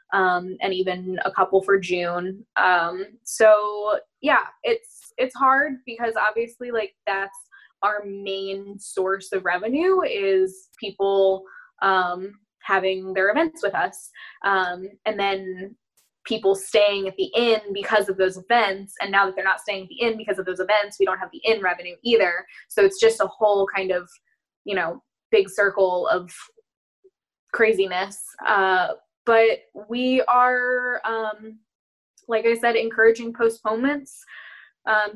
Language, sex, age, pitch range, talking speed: English, female, 10-29, 195-250 Hz, 145 wpm